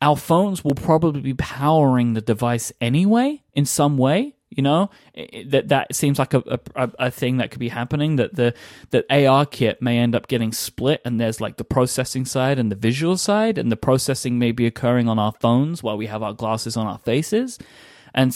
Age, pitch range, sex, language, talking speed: 20-39, 120-145 Hz, male, English, 210 wpm